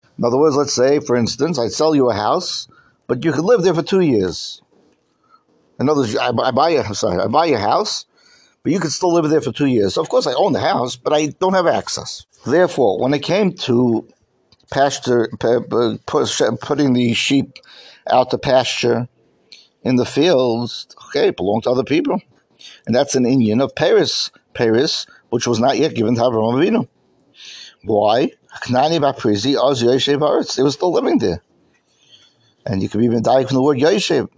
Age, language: 60-79, English